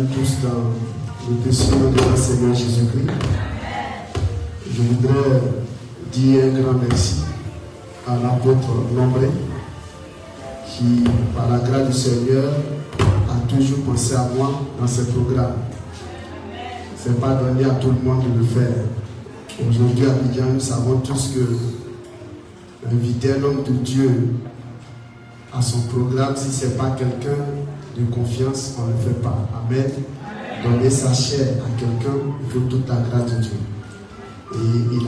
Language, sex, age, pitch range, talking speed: French, male, 50-69, 120-130 Hz, 140 wpm